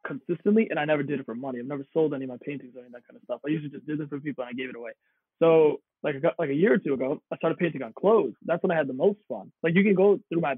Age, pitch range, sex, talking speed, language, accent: 20-39, 140-200 Hz, male, 335 wpm, English, American